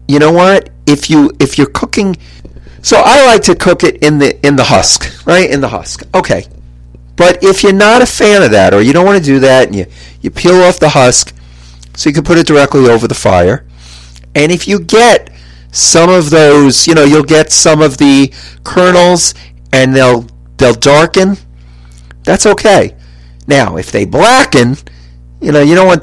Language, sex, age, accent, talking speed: English, male, 40-59, American, 195 wpm